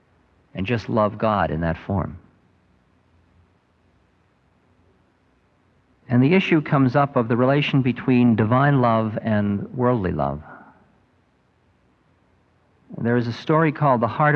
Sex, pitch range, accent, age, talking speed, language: male, 90-125 Hz, American, 50-69, 120 wpm, English